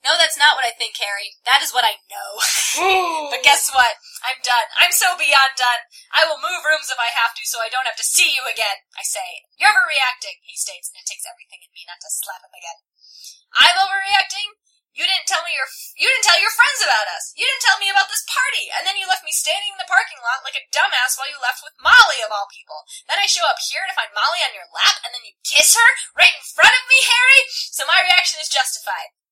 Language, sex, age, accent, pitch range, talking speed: English, female, 10-29, American, 255-390 Hz, 255 wpm